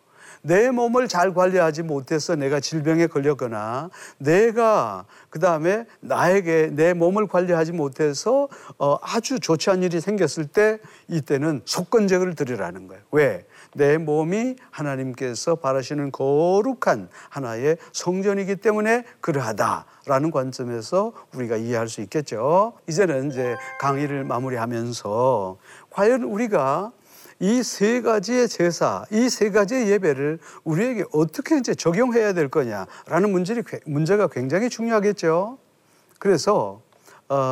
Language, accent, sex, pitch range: Korean, native, male, 150-220 Hz